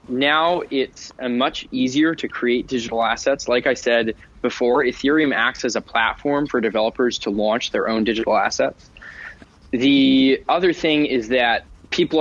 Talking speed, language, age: 155 wpm, English, 20-39